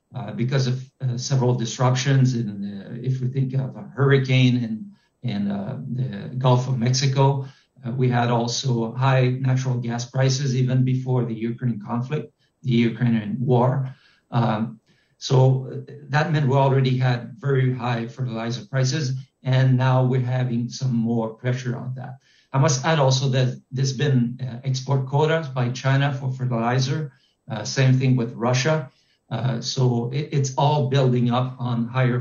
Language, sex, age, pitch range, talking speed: English, male, 50-69, 120-135 Hz, 160 wpm